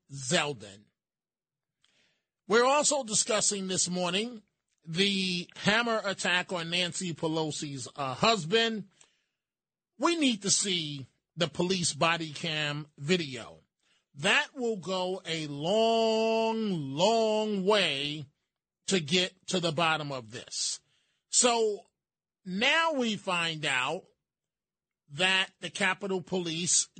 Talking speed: 100 wpm